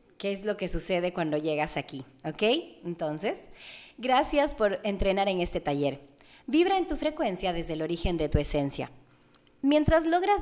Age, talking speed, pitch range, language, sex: 30-49, 160 wpm, 170-250 Hz, Spanish, female